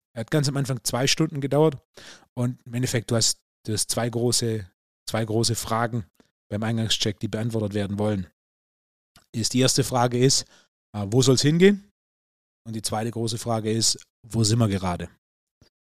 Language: German